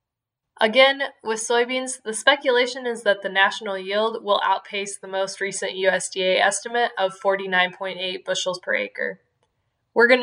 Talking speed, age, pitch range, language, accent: 140 wpm, 10-29, 195-235 Hz, English, American